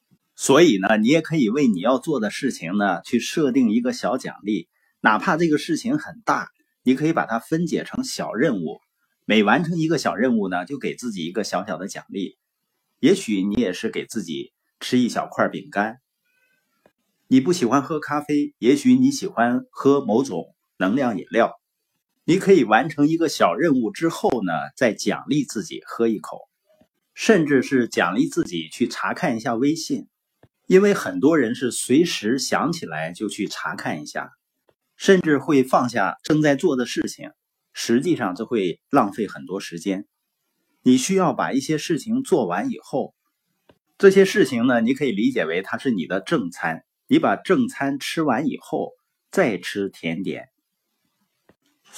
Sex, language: male, Chinese